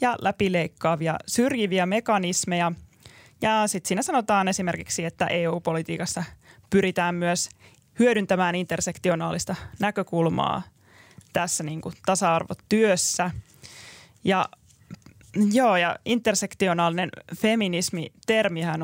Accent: native